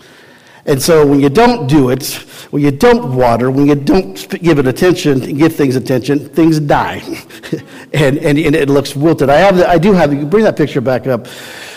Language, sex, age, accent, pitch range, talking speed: English, male, 50-69, American, 140-180 Hz, 205 wpm